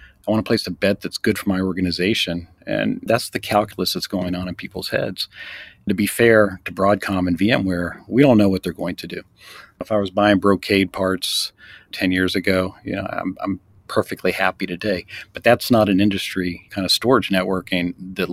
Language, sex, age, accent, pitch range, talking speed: English, male, 40-59, American, 95-105 Hz, 210 wpm